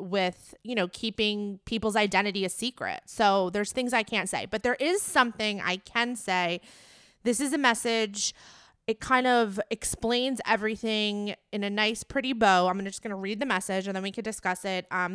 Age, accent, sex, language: 30-49, American, female, English